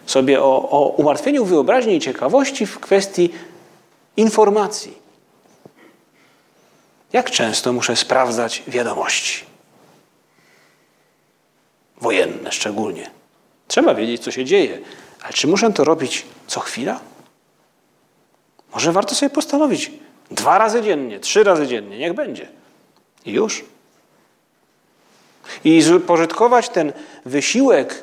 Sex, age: male, 40-59